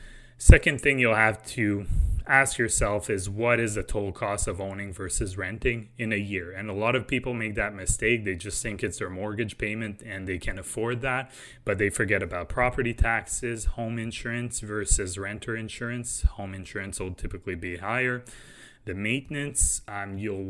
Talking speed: 180 wpm